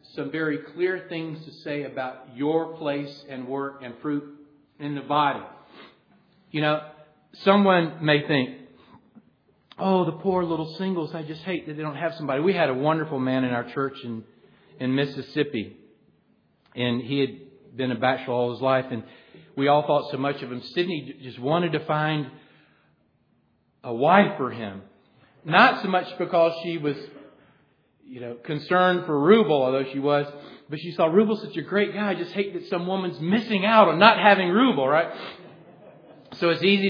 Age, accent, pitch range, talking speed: 40-59, American, 140-175 Hz, 175 wpm